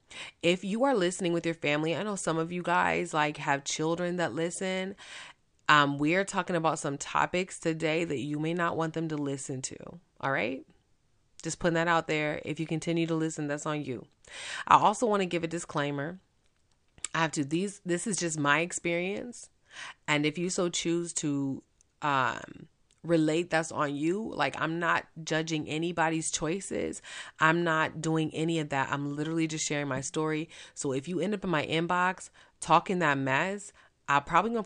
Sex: female